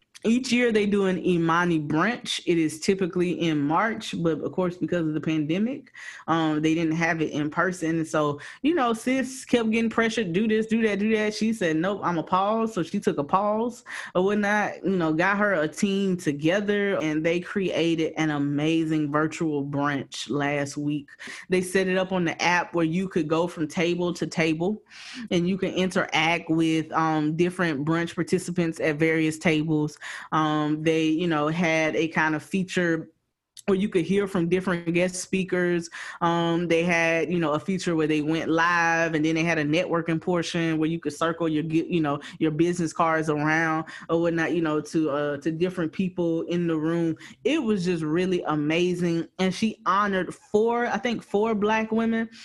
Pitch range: 160-190 Hz